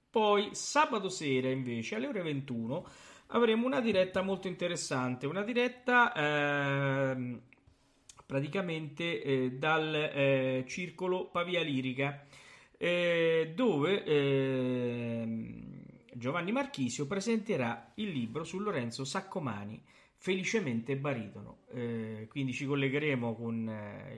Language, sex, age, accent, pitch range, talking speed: Italian, male, 40-59, native, 120-165 Hz, 100 wpm